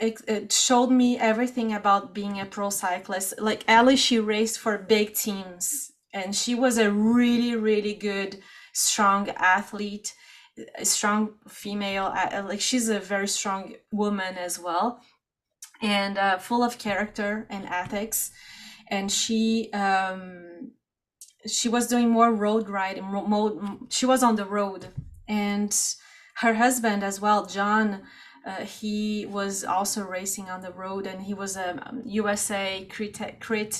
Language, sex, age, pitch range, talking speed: English, female, 30-49, 200-240 Hz, 145 wpm